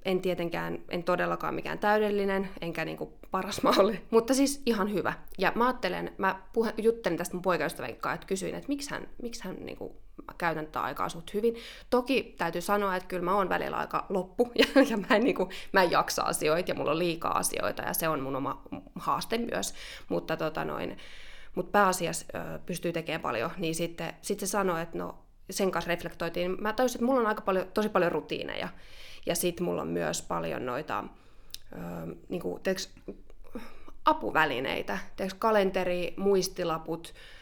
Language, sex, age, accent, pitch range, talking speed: Finnish, female, 20-39, native, 165-195 Hz, 175 wpm